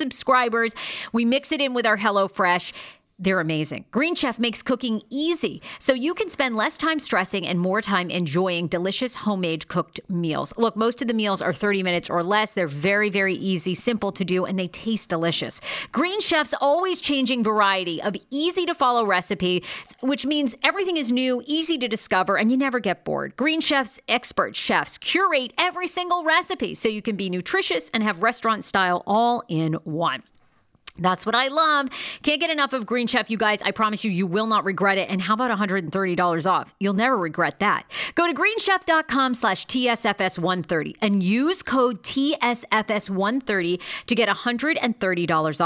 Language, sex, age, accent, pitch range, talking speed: English, female, 50-69, American, 195-275 Hz, 175 wpm